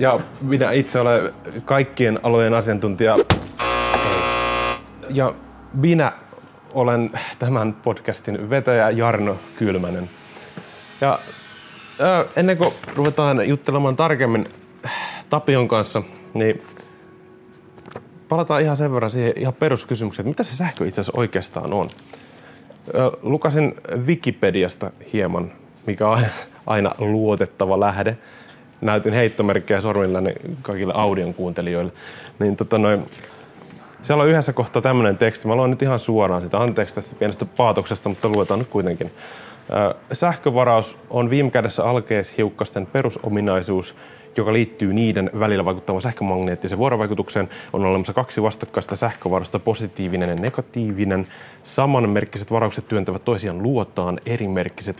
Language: Finnish